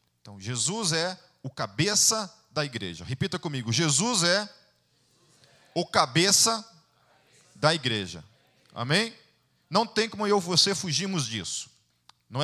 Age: 40-59